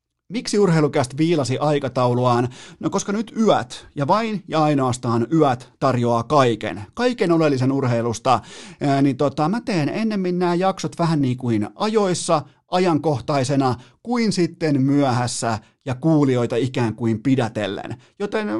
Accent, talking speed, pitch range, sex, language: native, 125 wpm, 120-155 Hz, male, Finnish